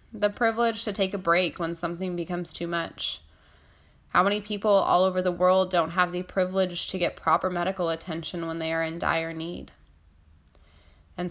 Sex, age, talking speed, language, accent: female, 10-29, 180 wpm, English, American